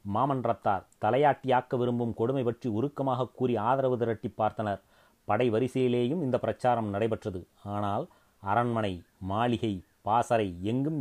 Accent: native